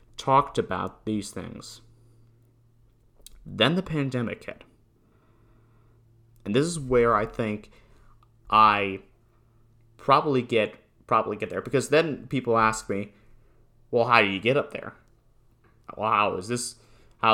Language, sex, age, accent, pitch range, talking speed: English, male, 30-49, American, 105-120 Hz, 130 wpm